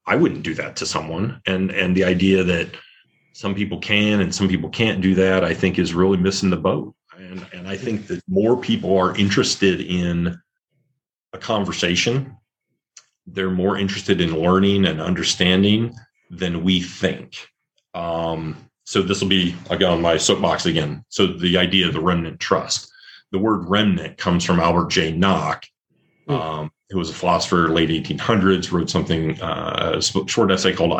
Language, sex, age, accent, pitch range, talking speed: English, male, 30-49, American, 85-95 Hz, 170 wpm